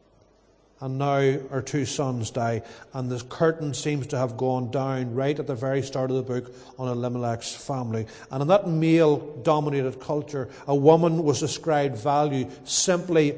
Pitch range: 130-155 Hz